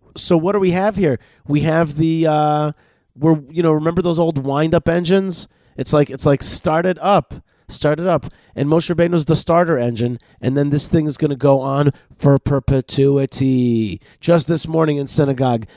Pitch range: 120-160 Hz